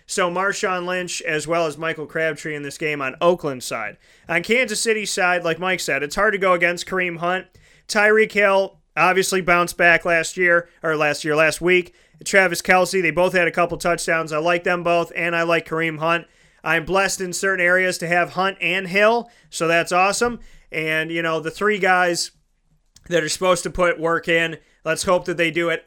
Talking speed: 205 wpm